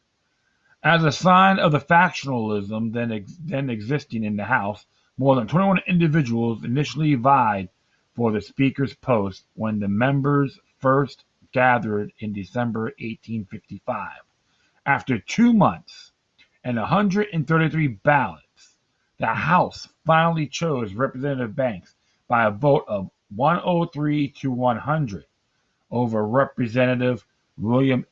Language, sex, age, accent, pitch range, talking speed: English, male, 40-59, American, 110-145 Hz, 110 wpm